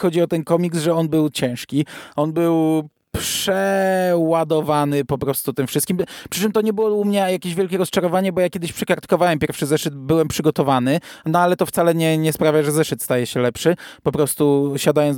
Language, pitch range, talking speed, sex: Polish, 140-170 Hz, 190 wpm, male